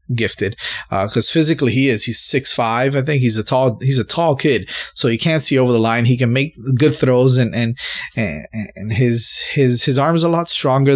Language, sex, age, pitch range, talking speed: English, male, 20-39, 115-145 Hz, 220 wpm